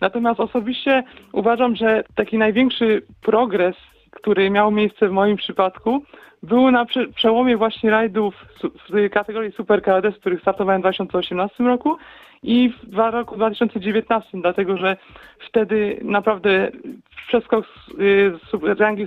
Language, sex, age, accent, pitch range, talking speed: Polish, male, 40-59, native, 185-230 Hz, 125 wpm